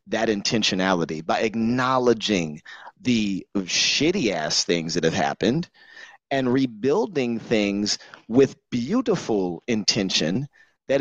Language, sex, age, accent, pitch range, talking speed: English, male, 30-49, American, 105-145 Hz, 100 wpm